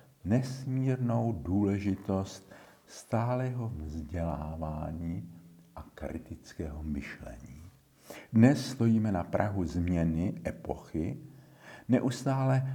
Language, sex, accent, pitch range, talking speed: Czech, male, native, 85-120 Hz, 65 wpm